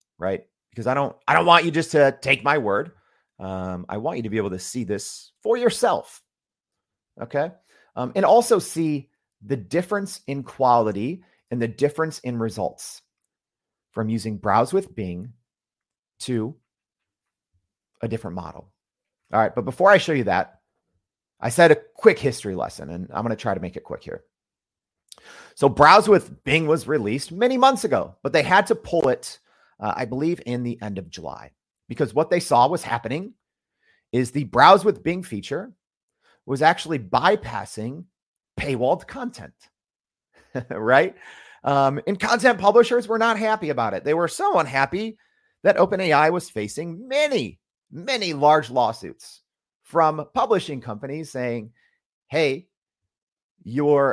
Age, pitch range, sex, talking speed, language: 30-49, 115-190 Hz, male, 155 wpm, English